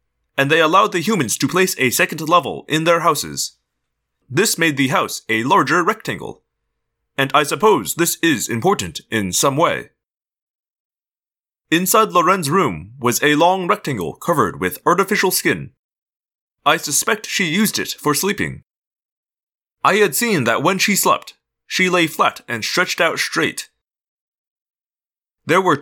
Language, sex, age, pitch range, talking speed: English, male, 20-39, 135-190 Hz, 145 wpm